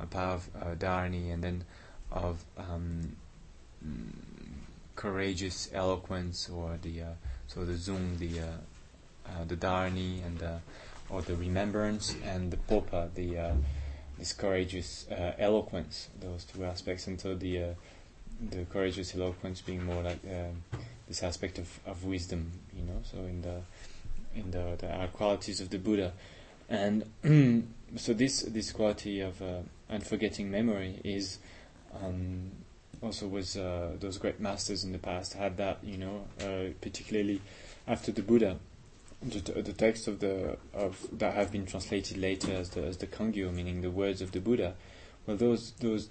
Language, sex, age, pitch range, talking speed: English, male, 20-39, 90-100 Hz, 160 wpm